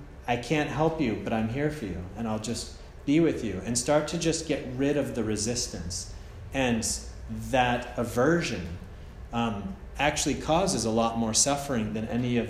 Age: 30-49